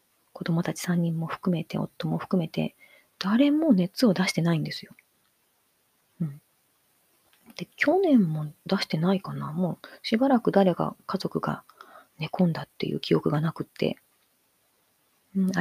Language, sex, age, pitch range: Japanese, female, 30-49, 160-200 Hz